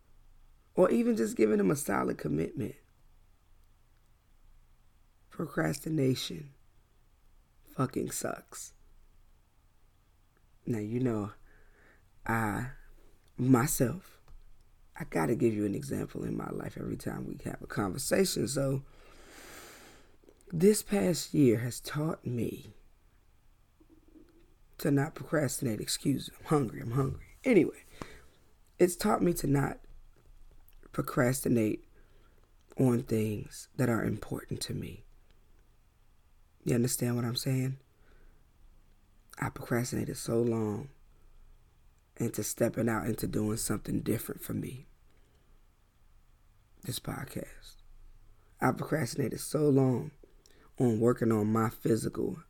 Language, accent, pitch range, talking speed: English, American, 105-135 Hz, 105 wpm